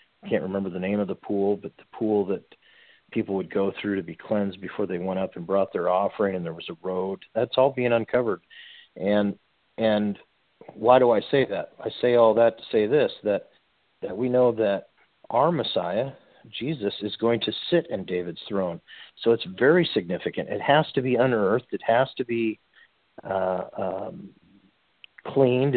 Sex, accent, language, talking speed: male, American, English, 185 wpm